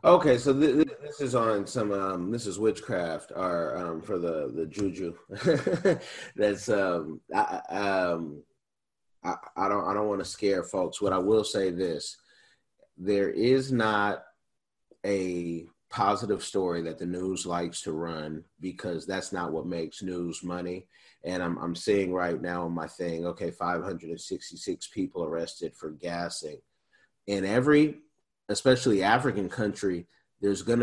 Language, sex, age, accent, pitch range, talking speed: English, male, 30-49, American, 90-110 Hz, 155 wpm